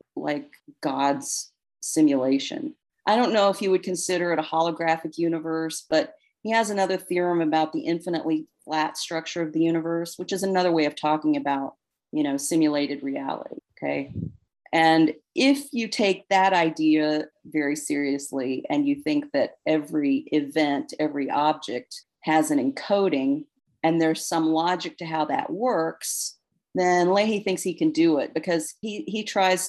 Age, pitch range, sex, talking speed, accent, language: 40-59, 155-210 Hz, female, 155 wpm, American, English